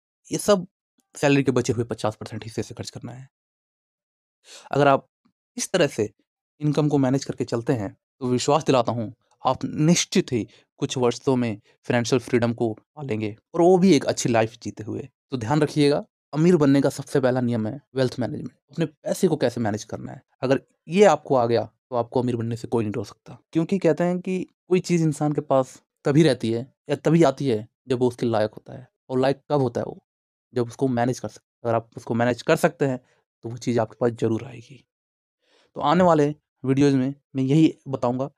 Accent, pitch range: native, 115-145 Hz